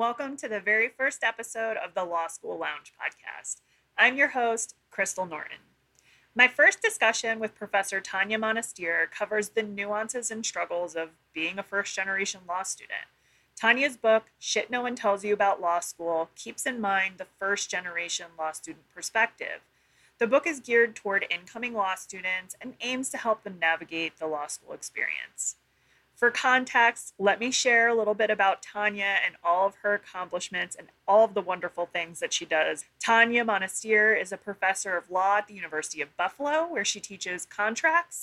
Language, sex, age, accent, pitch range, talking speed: English, female, 30-49, American, 185-230 Hz, 175 wpm